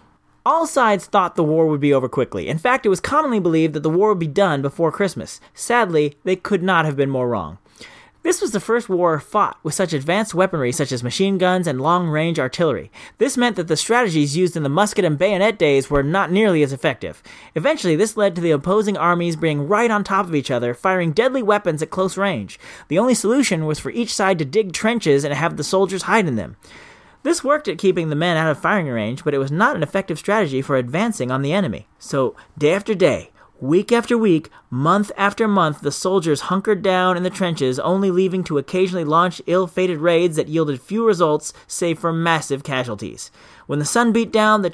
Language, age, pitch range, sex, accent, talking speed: English, 30-49, 150-205 Hz, male, American, 215 wpm